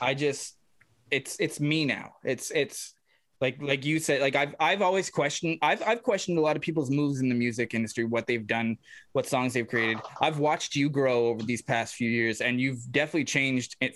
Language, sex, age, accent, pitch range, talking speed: English, male, 20-39, American, 120-150 Hz, 215 wpm